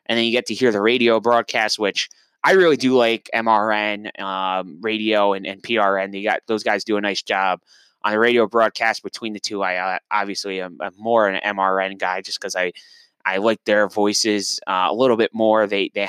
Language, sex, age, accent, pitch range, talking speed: English, male, 20-39, American, 100-120 Hz, 215 wpm